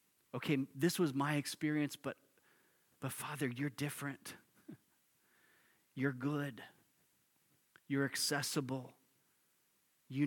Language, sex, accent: English, male, American